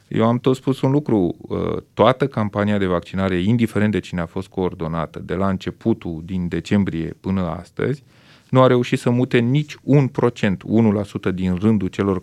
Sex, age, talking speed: male, 30-49, 170 wpm